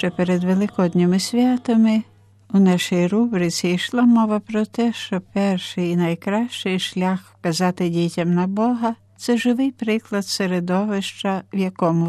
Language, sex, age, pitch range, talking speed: Ukrainian, female, 60-79, 170-210 Hz, 135 wpm